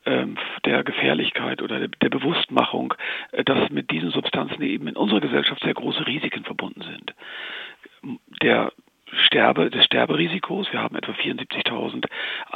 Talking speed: 125 wpm